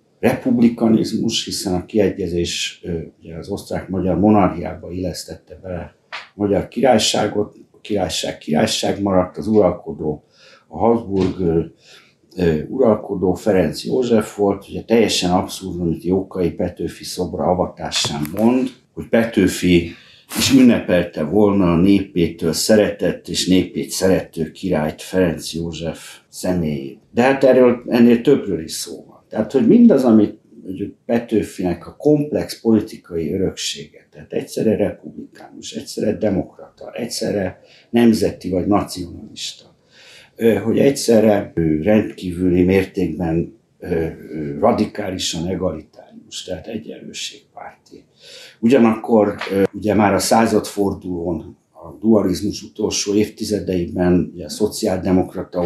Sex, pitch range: male, 85-105 Hz